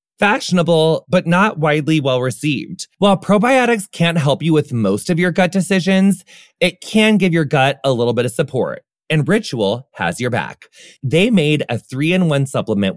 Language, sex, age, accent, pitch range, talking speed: English, male, 30-49, American, 120-180 Hz, 165 wpm